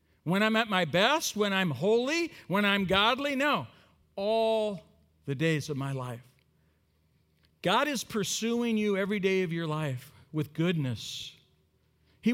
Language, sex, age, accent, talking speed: English, male, 50-69, American, 145 wpm